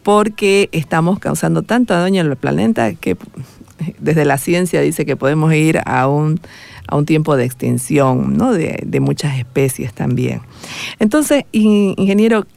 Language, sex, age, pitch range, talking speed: Portuguese, female, 50-69, 145-195 Hz, 150 wpm